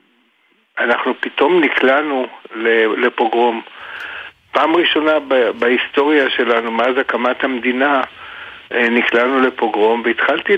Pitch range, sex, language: 115-145 Hz, male, Hebrew